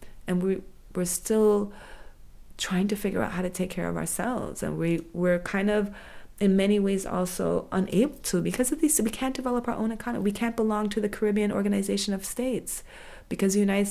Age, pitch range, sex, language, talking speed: 30-49, 175-225 Hz, female, English, 190 wpm